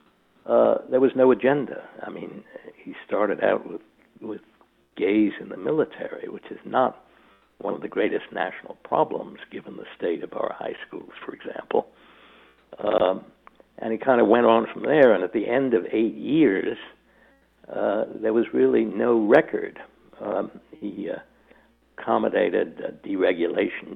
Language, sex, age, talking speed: English, male, 60-79, 155 wpm